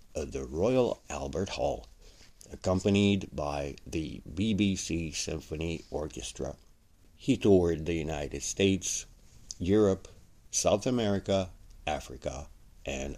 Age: 60-79